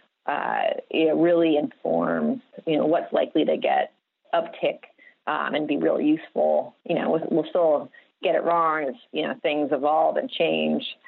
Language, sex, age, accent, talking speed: English, female, 30-49, American, 170 wpm